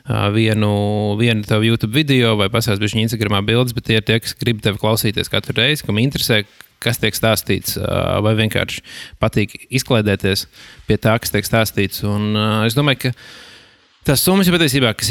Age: 20-39